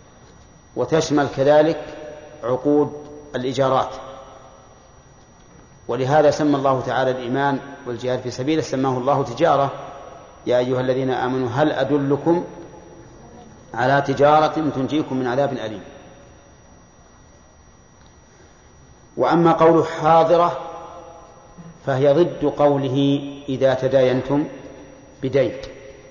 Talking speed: 85 wpm